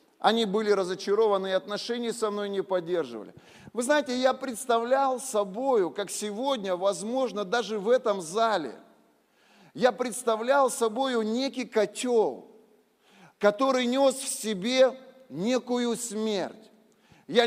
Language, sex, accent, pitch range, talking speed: Russian, male, native, 205-250 Hz, 115 wpm